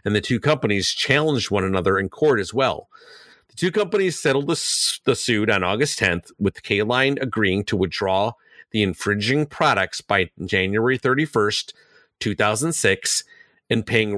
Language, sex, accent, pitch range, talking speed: English, male, American, 100-140 Hz, 150 wpm